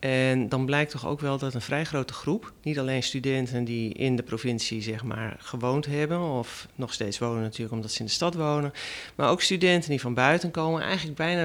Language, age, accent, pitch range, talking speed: Dutch, 40-59, Dutch, 125-155 Hz, 220 wpm